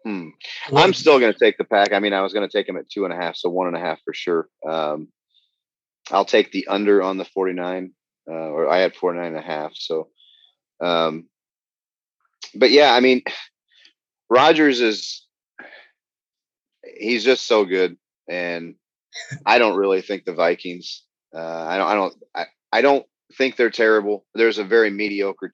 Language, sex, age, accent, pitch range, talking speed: English, male, 30-49, American, 90-110 Hz, 185 wpm